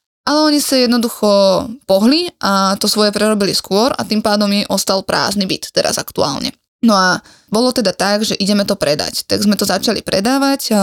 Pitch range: 190-225 Hz